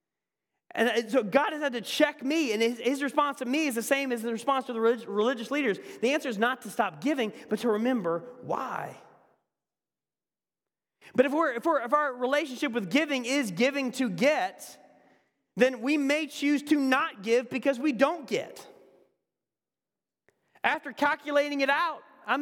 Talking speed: 175 wpm